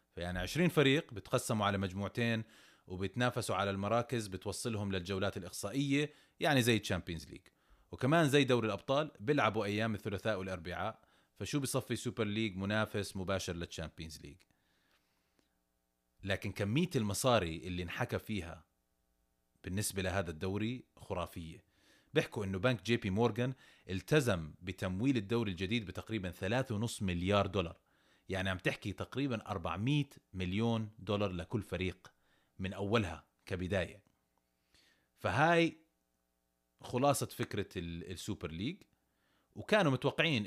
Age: 30-49